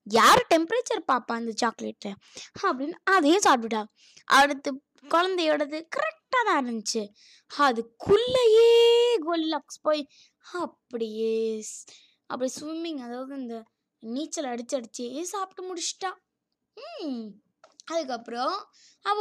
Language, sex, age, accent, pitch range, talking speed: Tamil, female, 20-39, native, 240-365 Hz, 35 wpm